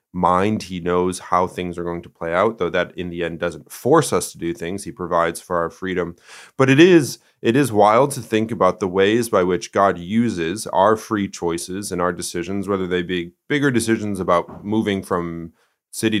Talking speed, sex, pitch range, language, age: 205 wpm, male, 85-110 Hz, English, 30-49